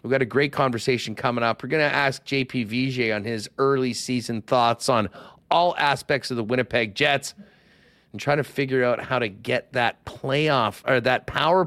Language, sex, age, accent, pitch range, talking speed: English, male, 40-59, American, 115-150 Hz, 195 wpm